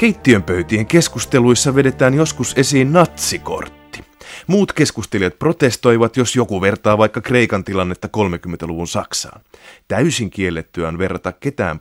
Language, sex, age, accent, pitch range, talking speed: Finnish, male, 30-49, native, 95-130 Hz, 110 wpm